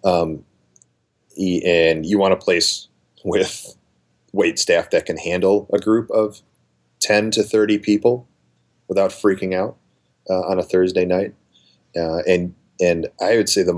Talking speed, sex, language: 150 wpm, male, English